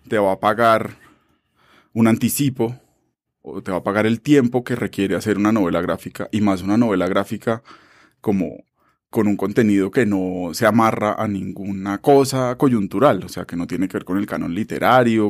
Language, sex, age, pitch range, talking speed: Spanish, male, 20-39, 100-130 Hz, 185 wpm